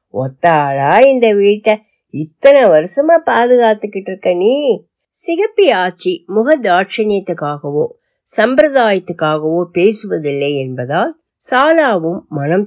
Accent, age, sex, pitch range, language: native, 50-69, female, 165-235 Hz, Tamil